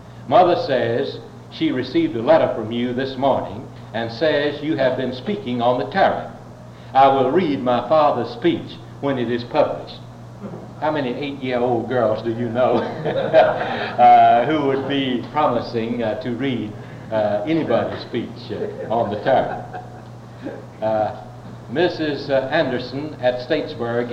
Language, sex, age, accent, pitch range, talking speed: English, male, 60-79, American, 115-145 Hz, 140 wpm